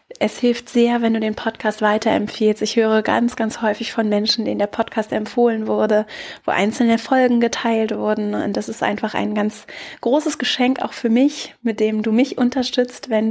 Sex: female